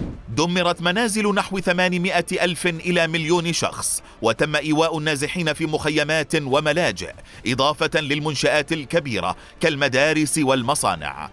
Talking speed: 95 wpm